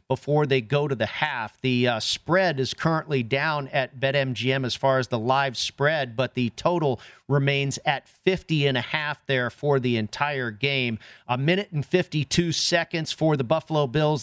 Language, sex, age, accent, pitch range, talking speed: English, male, 40-59, American, 130-150 Hz, 170 wpm